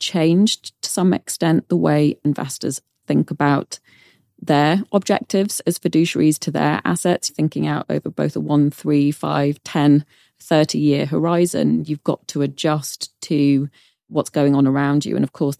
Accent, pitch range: British, 140-160 Hz